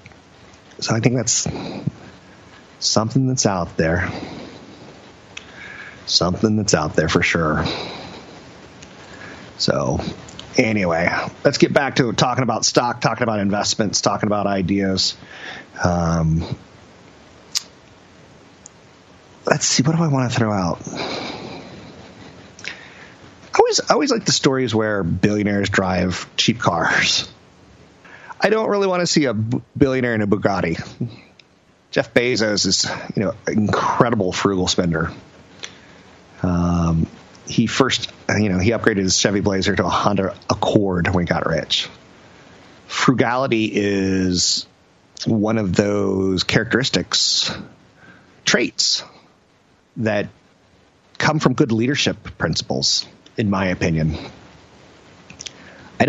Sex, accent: male, American